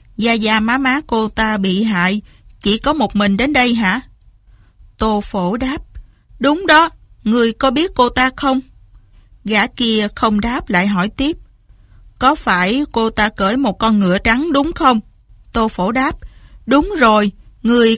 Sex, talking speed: female, 165 wpm